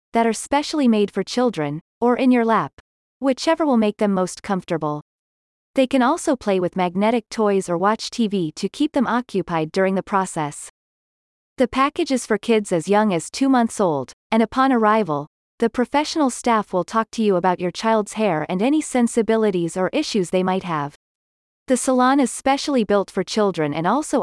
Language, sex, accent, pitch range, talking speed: English, female, American, 180-245 Hz, 185 wpm